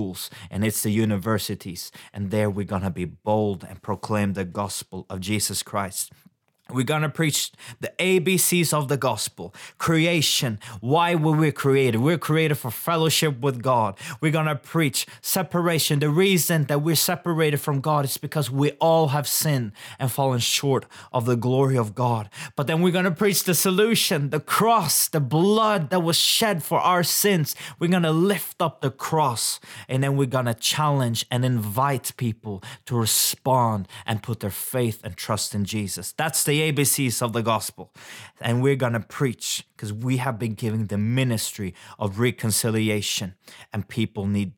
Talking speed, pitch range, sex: 170 wpm, 110-155 Hz, male